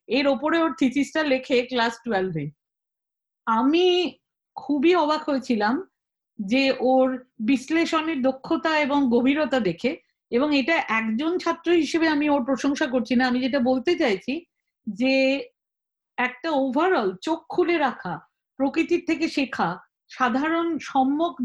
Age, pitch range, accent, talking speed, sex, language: 50-69, 240-305 Hz, Indian, 125 wpm, female, English